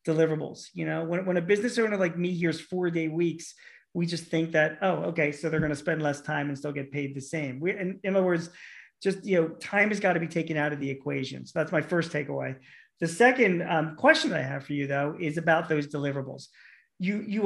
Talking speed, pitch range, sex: 245 wpm, 150-180 Hz, male